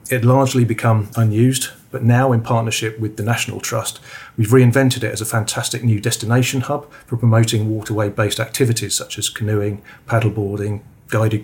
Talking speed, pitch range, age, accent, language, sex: 165 wpm, 110-130 Hz, 40-59, British, English, male